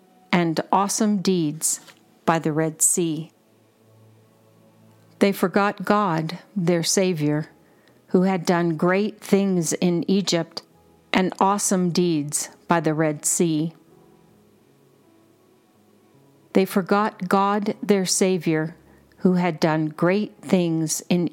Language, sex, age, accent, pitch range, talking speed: English, female, 40-59, American, 160-195 Hz, 105 wpm